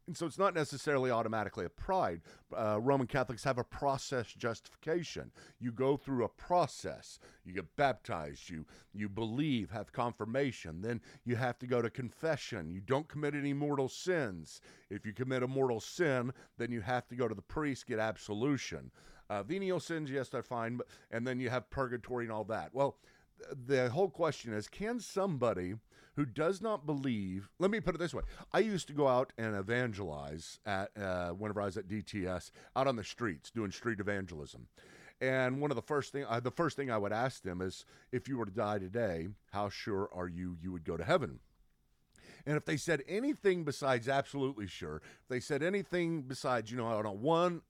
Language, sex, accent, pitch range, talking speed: English, male, American, 105-140 Hz, 200 wpm